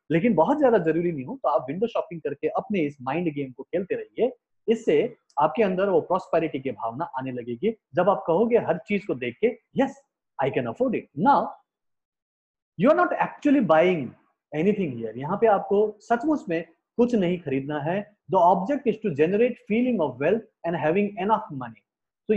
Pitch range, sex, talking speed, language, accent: 160-270 Hz, male, 190 wpm, Hindi, native